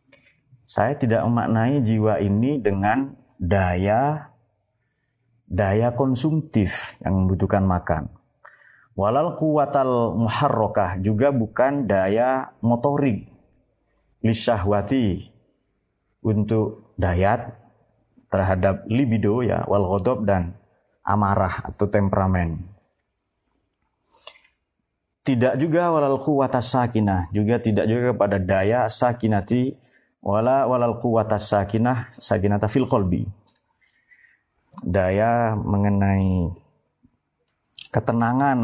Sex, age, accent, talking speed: male, 30-49, native, 70 wpm